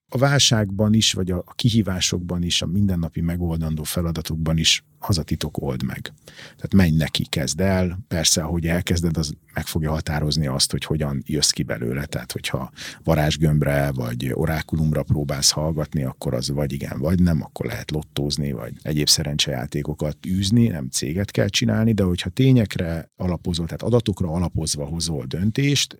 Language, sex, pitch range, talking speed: Hungarian, male, 75-105 Hz, 150 wpm